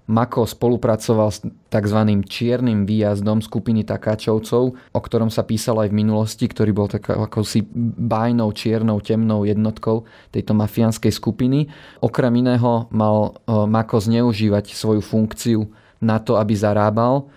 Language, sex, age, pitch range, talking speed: Slovak, male, 20-39, 105-115 Hz, 130 wpm